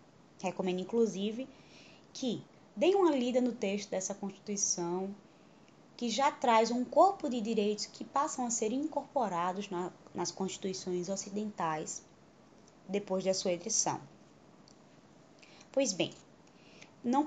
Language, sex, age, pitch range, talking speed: Portuguese, female, 10-29, 190-255 Hz, 110 wpm